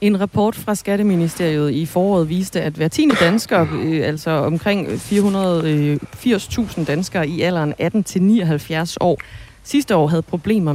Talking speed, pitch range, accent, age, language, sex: 135 wpm, 160-210 Hz, native, 30-49, Danish, female